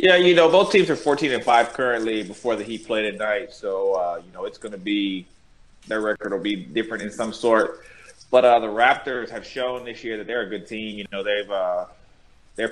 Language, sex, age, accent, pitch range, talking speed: English, male, 20-39, American, 105-120 Hz, 235 wpm